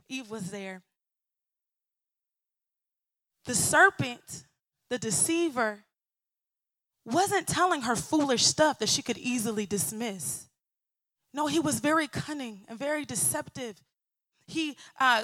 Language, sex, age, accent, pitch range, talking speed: English, female, 20-39, American, 215-275 Hz, 105 wpm